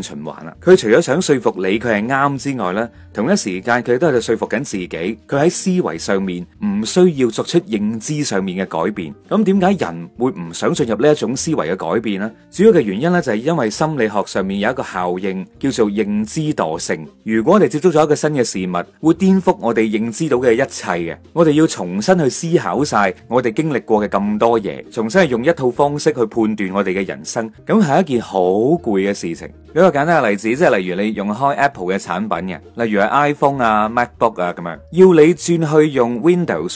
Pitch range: 105-160 Hz